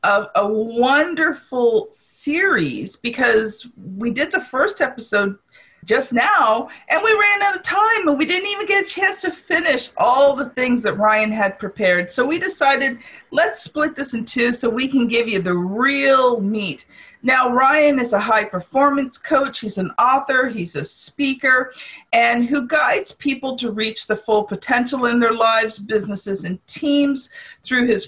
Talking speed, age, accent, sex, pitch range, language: 170 wpm, 40-59, American, female, 200-270 Hz, English